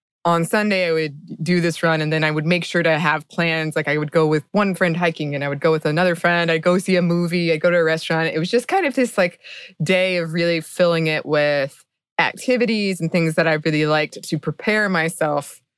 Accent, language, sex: American, English, female